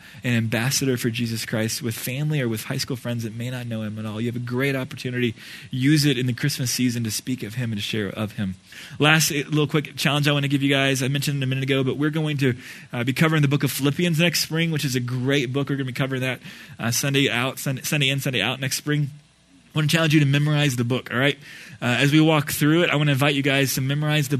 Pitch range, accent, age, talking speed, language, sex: 125-150 Hz, American, 20-39, 280 wpm, English, male